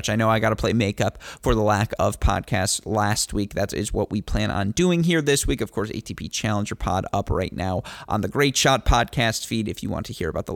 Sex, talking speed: male, 255 wpm